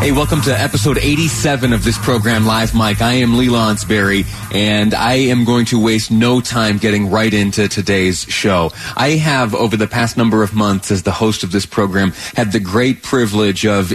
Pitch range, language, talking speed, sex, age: 100-125 Hz, English, 200 wpm, male, 30-49